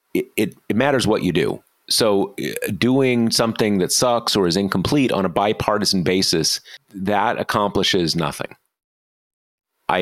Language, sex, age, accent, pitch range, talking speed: English, male, 30-49, American, 95-135 Hz, 130 wpm